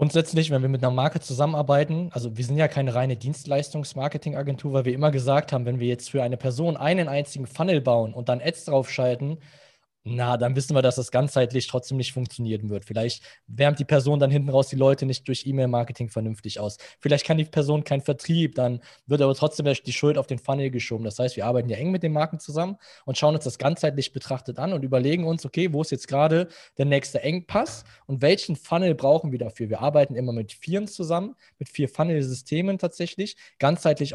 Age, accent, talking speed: 20-39, German, 210 wpm